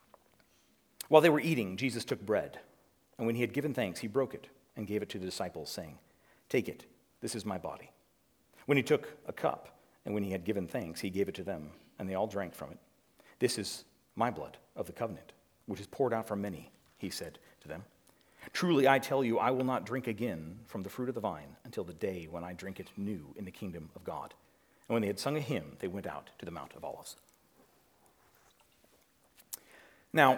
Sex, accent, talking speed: male, American, 220 wpm